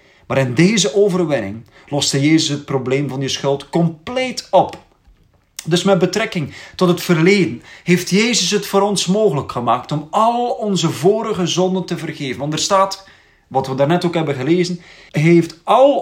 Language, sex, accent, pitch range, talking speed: Dutch, male, Dutch, 140-190 Hz, 165 wpm